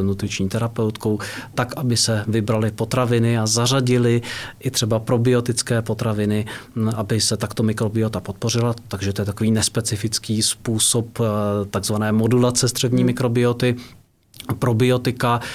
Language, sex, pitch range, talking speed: Czech, male, 105-120 Hz, 110 wpm